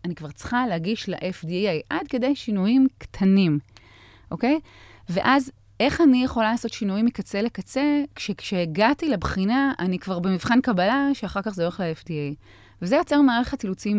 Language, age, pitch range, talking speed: Hebrew, 30-49, 155-215 Hz, 140 wpm